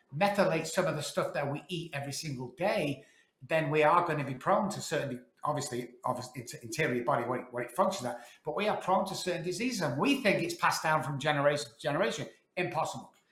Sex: male